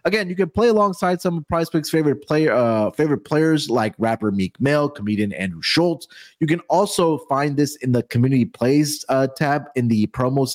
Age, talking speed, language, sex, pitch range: 30-49, 180 wpm, English, male, 120-165 Hz